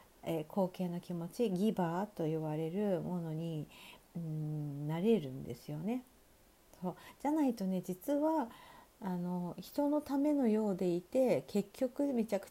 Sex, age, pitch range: female, 50-69, 180-275 Hz